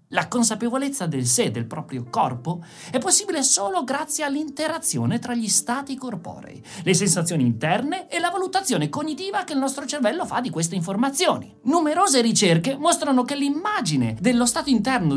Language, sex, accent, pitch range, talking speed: Italian, male, native, 185-290 Hz, 155 wpm